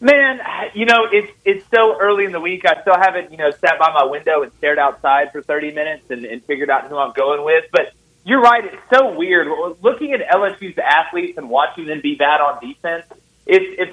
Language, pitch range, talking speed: English, 160-215 Hz, 225 wpm